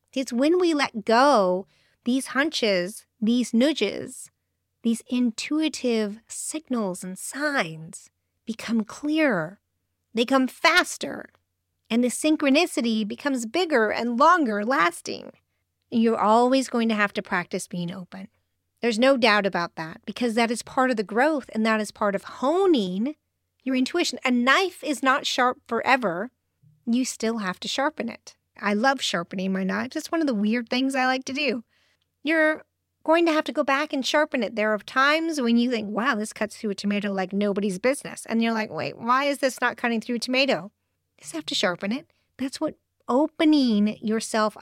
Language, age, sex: English, 40-59, female